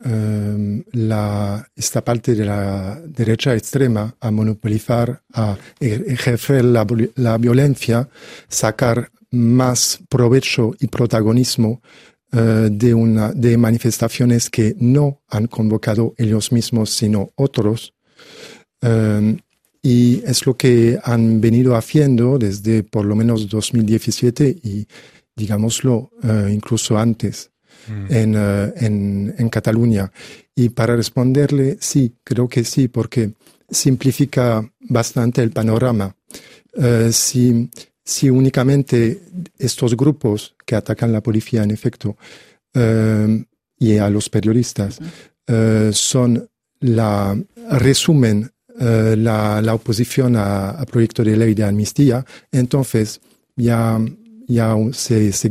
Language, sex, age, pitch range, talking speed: Spanish, male, 50-69, 110-125 Hz, 115 wpm